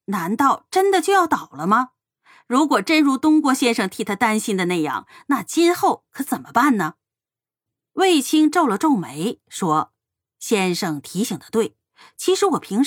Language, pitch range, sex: Chinese, 180-300 Hz, female